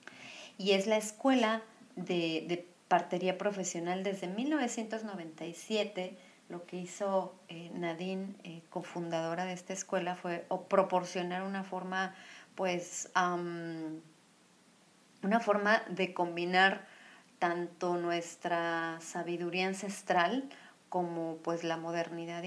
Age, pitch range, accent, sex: 40-59, 170-200 Hz, Mexican, female